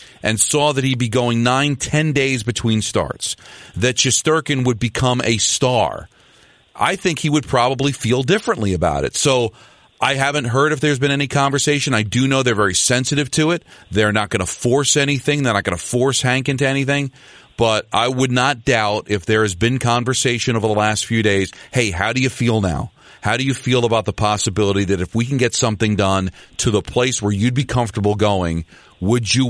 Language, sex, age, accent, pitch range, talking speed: English, male, 40-59, American, 110-135 Hz, 205 wpm